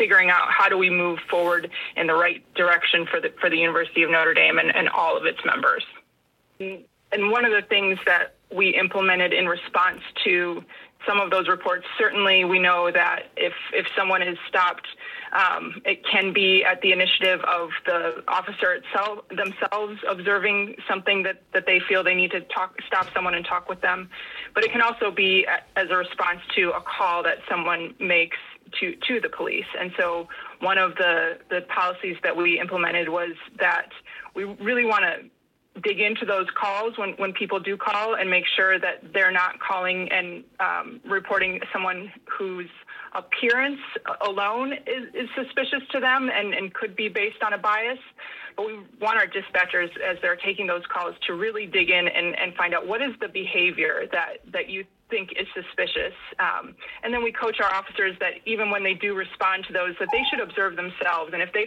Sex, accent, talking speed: female, American, 195 wpm